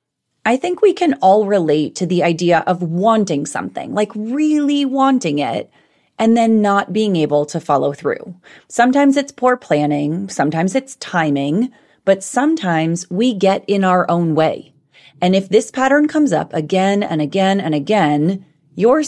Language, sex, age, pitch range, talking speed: English, female, 30-49, 170-225 Hz, 160 wpm